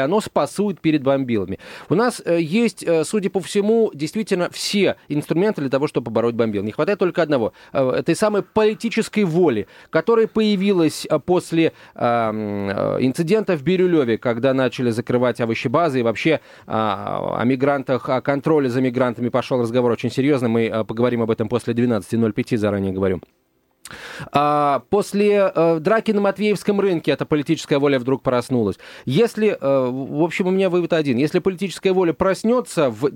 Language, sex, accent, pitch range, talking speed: Russian, male, native, 125-190 Hz, 145 wpm